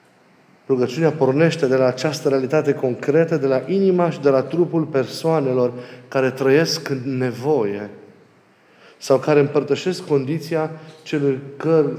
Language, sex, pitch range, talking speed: Romanian, male, 130-155 Hz, 125 wpm